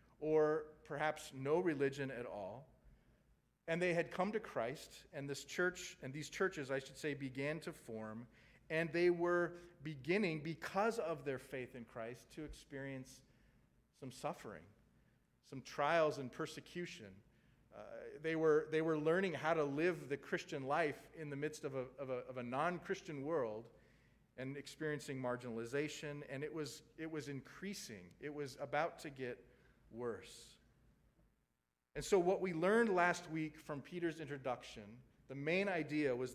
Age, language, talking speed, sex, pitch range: 40-59, English, 155 wpm, male, 130-160 Hz